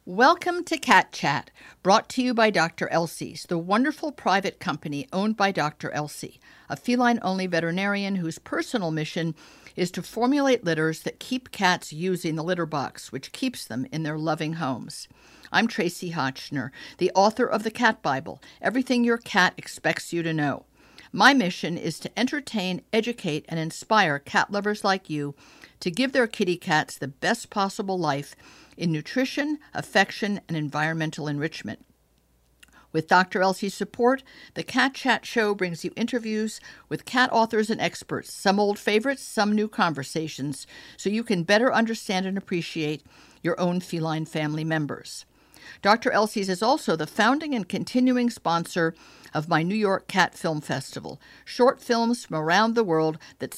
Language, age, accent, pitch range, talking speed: English, 50-69, American, 160-225 Hz, 160 wpm